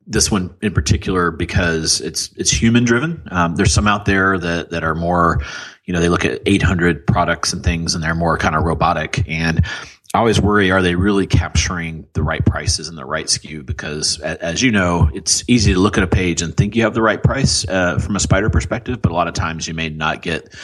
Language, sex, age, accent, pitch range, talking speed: English, male, 30-49, American, 80-100 Hz, 235 wpm